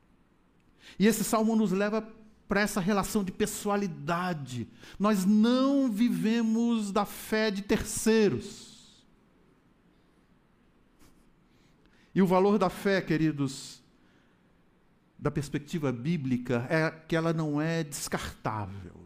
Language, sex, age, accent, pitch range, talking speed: Portuguese, male, 60-79, Brazilian, 140-225 Hz, 100 wpm